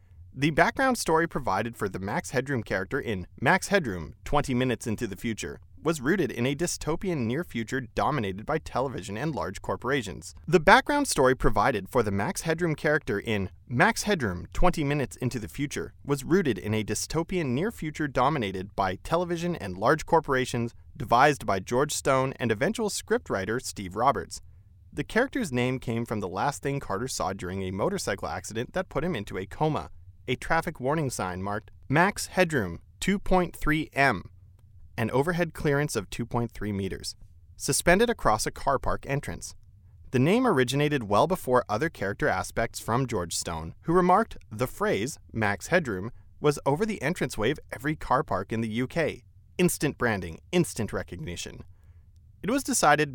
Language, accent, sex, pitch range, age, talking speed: English, American, male, 100-155 Hz, 30-49, 165 wpm